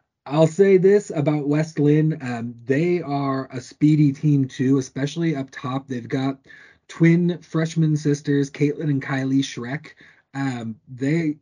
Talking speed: 140 wpm